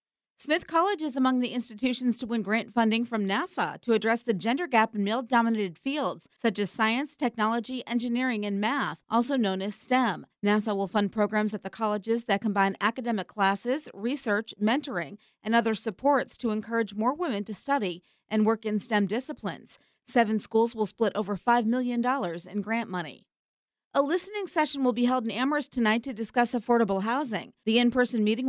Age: 40-59